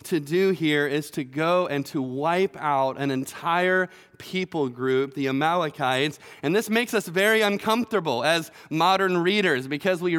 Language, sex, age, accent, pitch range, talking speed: English, male, 30-49, American, 165-200 Hz, 160 wpm